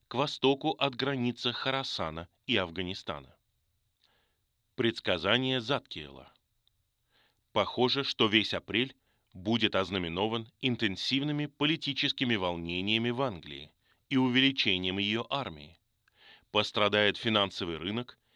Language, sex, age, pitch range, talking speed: Russian, male, 20-39, 100-130 Hz, 90 wpm